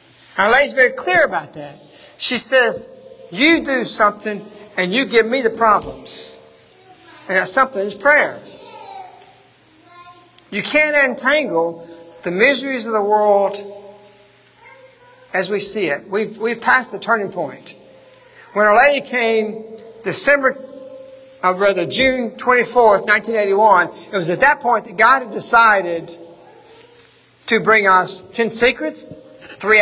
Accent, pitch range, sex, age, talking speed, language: American, 200-285 Hz, male, 60-79, 130 wpm, English